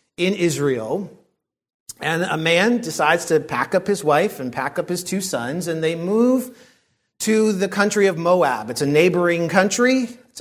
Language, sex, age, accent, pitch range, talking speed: English, male, 40-59, American, 145-190 Hz, 175 wpm